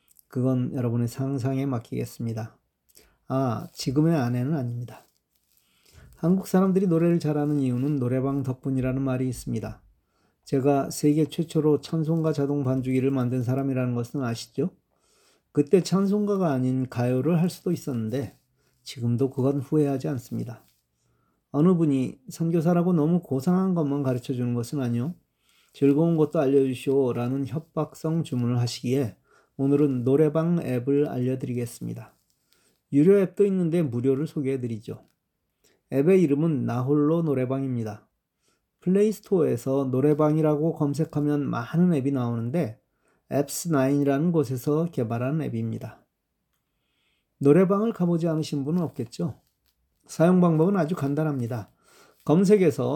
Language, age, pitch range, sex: Korean, 40-59, 130-160 Hz, male